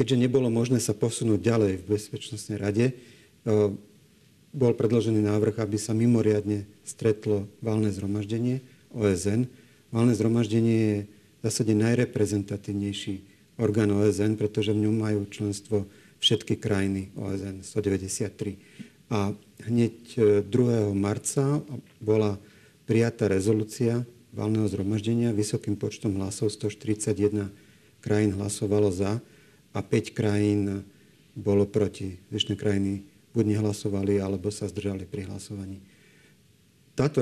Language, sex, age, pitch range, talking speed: Slovak, male, 40-59, 105-120 Hz, 110 wpm